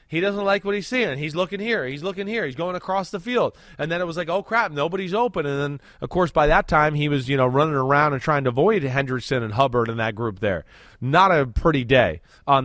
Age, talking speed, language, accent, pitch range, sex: 20-39, 260 wpm, English, American, 140-195 Hz, male